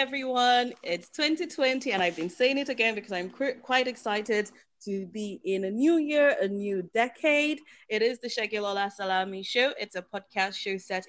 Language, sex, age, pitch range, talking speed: English, female, 30-49, 180-250 Hz, 185 wpm